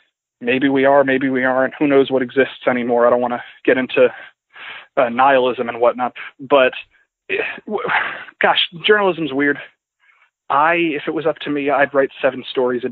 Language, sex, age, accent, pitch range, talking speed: English, male, 20-39, American, 125-155 Hz, 170 wpm